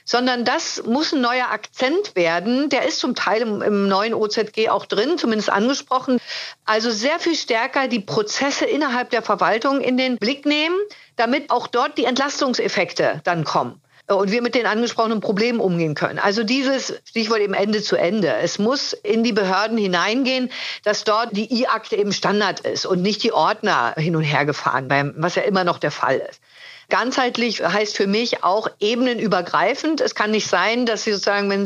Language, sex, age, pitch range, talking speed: German, female, 50-69, 195-245 Hz, 180 wpm